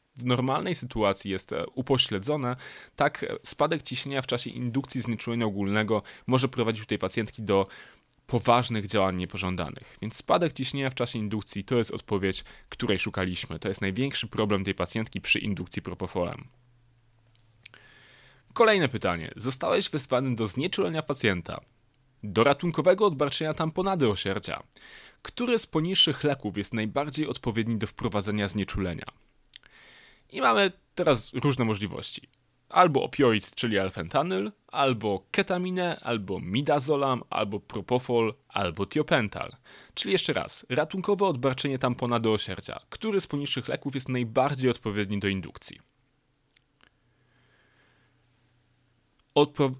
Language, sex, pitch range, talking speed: Polish, male, 105-140 Hz, 120 wpm